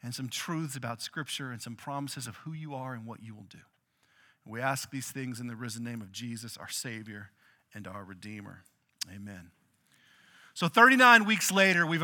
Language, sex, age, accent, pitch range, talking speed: English, male, 40-59, American, 155-220 Hz, 190 wpm